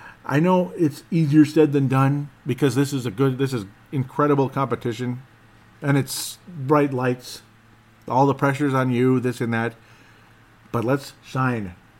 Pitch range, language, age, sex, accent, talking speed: 110-135 Hz, English, 50-69, male, American, 155 wpm